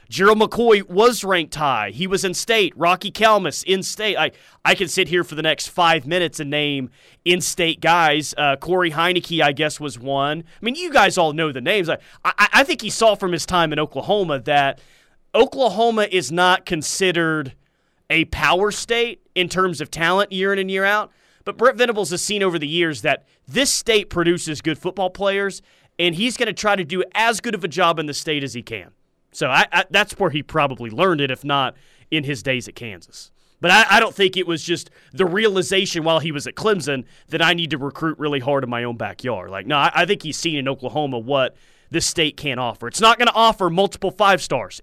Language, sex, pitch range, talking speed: English, male, 145-195 Hz, 220 wpm